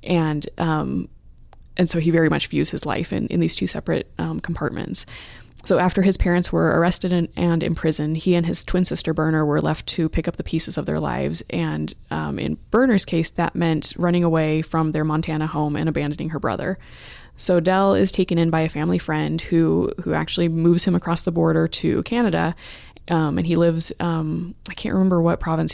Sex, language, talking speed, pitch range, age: female, English, 210 wpm, 150-175 Hz, 20-39